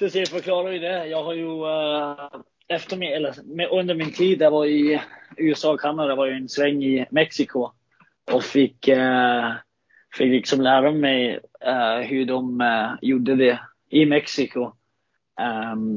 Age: 30-49